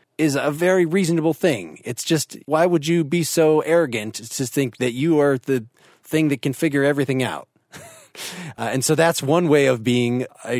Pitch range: 115-145 Hz